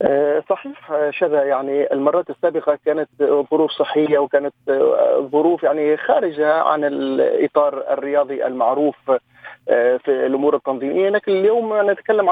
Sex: male